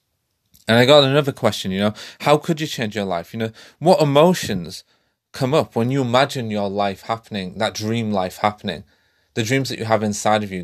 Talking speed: 210 wpm